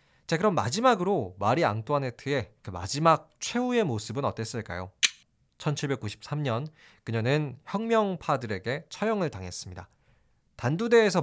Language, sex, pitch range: Korean, male, 115-185 Hz